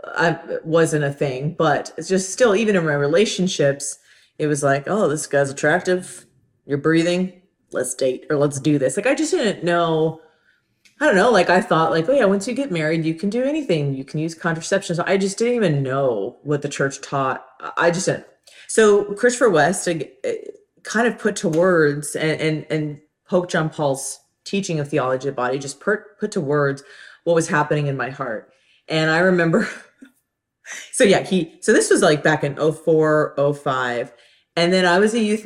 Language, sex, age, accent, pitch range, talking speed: English, female, 30-49, American, 150-185 Hz, 205 wpm